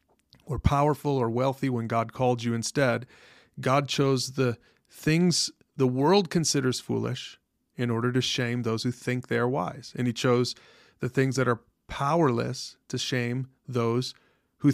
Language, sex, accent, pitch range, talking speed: English, male, American, 120-135 Hz, 160 wpm